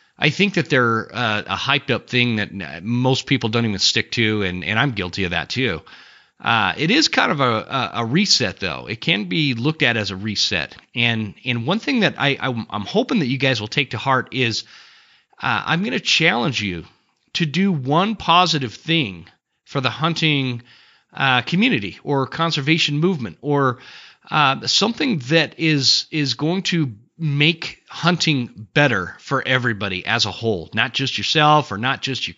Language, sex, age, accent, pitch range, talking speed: English, male, 30-49, American, 115-165 Hz, 180 wpm